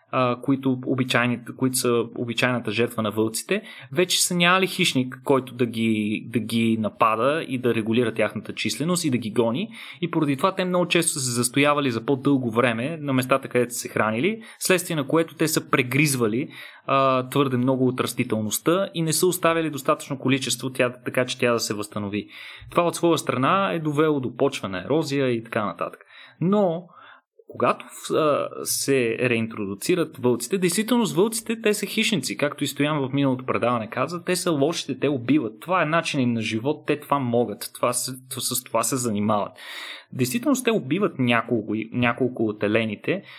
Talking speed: 170 wpm